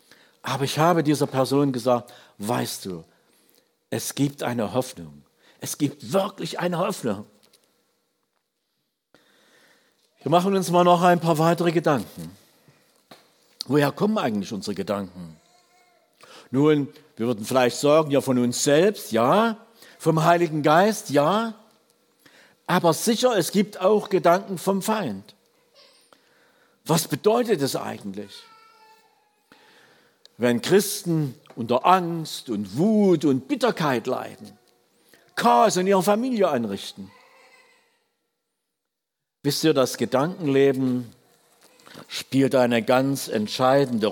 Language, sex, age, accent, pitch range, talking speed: German, male, 60-79, German, 125-195 Hz, 105 wpm